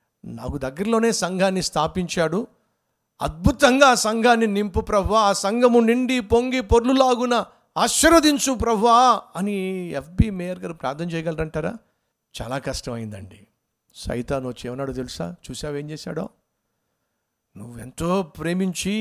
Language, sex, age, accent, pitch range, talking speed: Telugu, male, 50-69, native, 150-230 Hz, 105 wpm